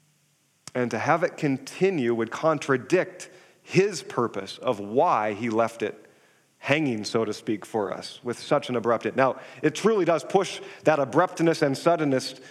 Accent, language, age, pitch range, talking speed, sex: American, English, 40-59, 120-165 Hz, 160 wpm, male